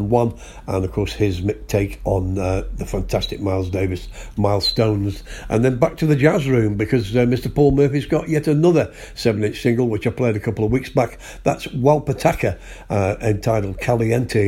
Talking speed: 175 wpm